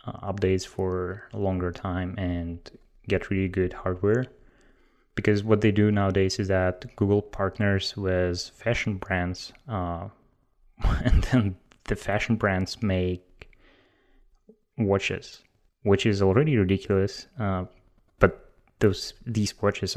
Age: 20-39